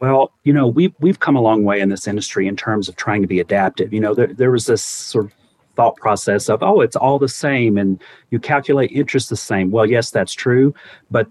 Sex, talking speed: male, 240 wpm